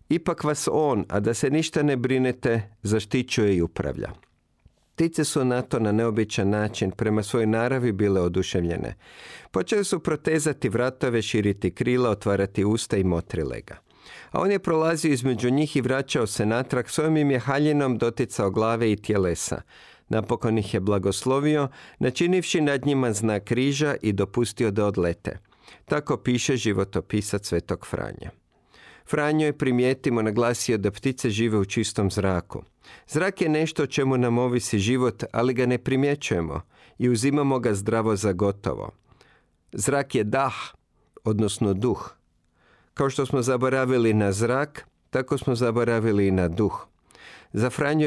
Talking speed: 145 wpm